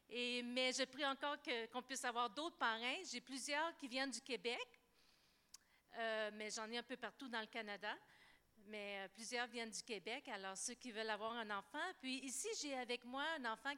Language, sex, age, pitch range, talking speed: French, female, 50-69, 220-275 Hz, 205 wpm